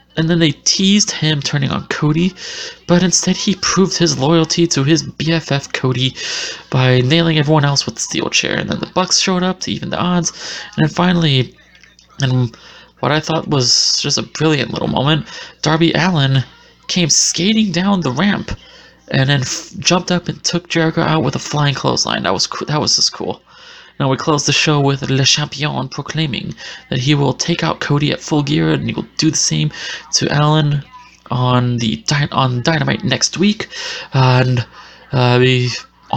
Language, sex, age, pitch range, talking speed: English, male, 20-39, 135-170 Hz, 180 wpm